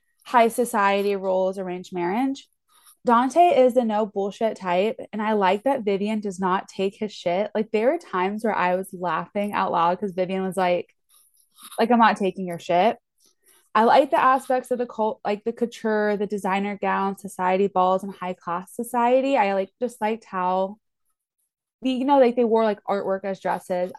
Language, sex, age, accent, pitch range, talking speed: English, female, 20-39, American, 190-235 Hz, 185 wpm